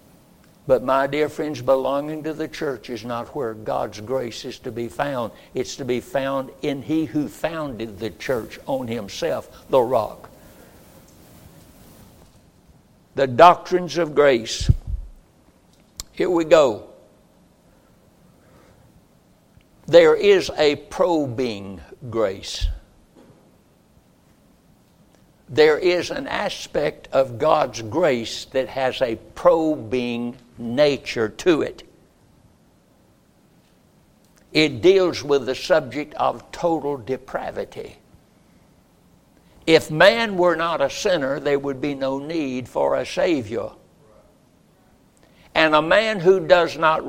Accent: American